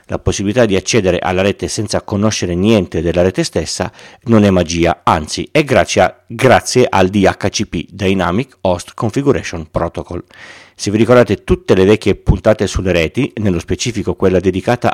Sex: male